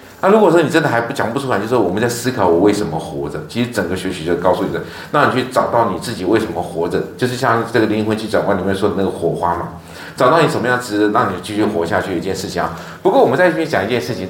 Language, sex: Chinese, male